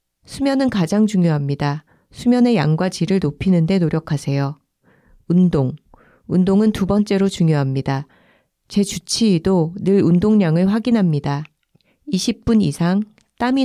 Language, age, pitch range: Korean, 40-59, 160-220 Hz